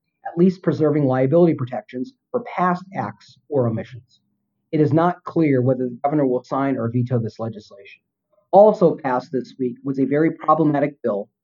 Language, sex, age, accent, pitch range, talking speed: English, male, 40-59, American, 130-170 Hz, 170 wpm